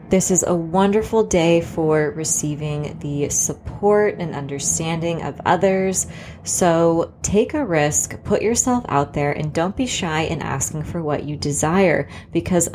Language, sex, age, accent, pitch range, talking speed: English, female, 20-39, American, 150-185 Hz, 150 wpm